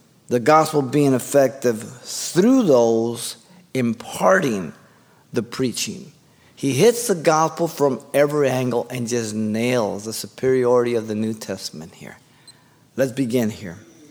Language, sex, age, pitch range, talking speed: English, male, 50-69, 125-160 Hz, 125 wpm